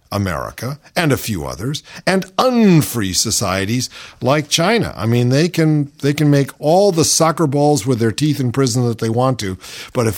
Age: 50-69